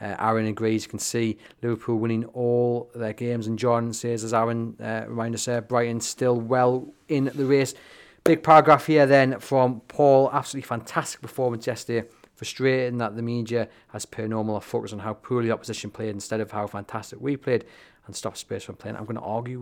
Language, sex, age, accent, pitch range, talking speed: English, male, 30-49, British, 105-120 Hz, 195 wpm